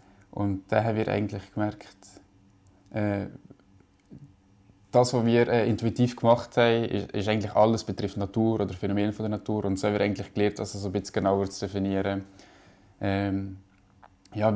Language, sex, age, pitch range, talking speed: French, male, 20-39, 95-110 Hz, 140 wpm